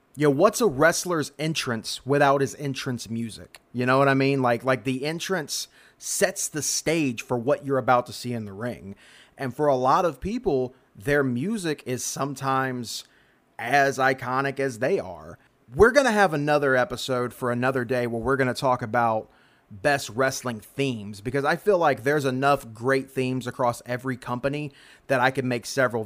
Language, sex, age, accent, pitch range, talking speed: English, male, 30-49, American, 120-140 Hz, 185 wpm